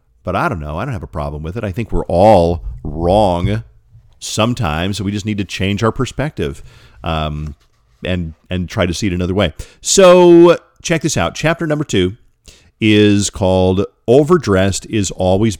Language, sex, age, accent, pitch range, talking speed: English, male, 40-59, American, 90-130 Hz, 175 wpm